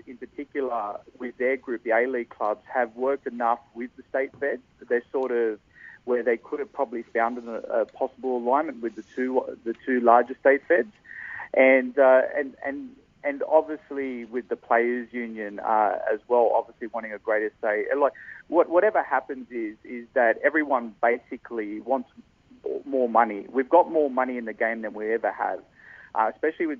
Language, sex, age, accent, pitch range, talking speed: English, male, 40-59, Australian, 115-135 Hz, 185 wpm